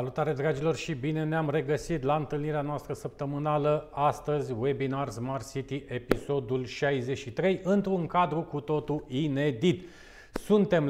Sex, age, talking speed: male, 40-59, 120 wpm